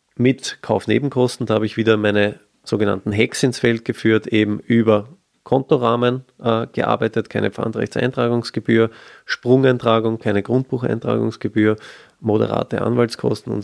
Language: German